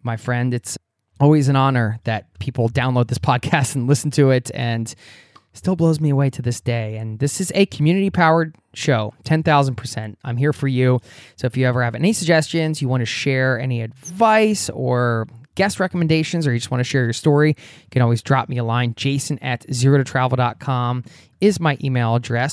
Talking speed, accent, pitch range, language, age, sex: 200 wpm, American, 125-165 Hz, English, 20-39, male